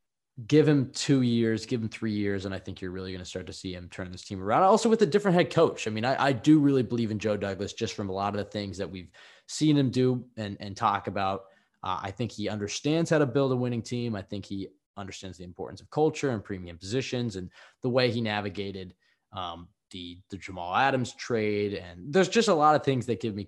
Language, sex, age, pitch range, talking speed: English, male, 20-39, 100-135 Hz, 250 wpm